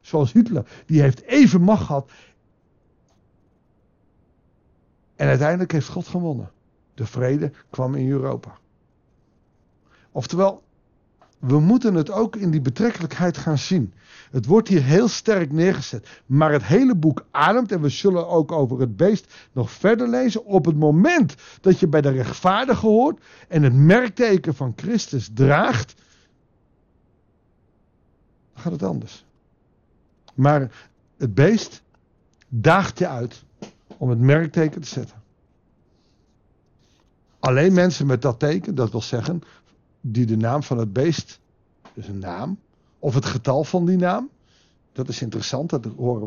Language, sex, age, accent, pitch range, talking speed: Dutch, male, 60-79, Dutch, 130-185 Hz, 135 wpm